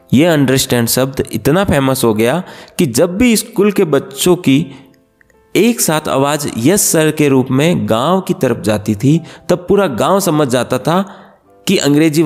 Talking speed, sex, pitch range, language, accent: 170 wpm, male, 125-170 Hz, Hindi, native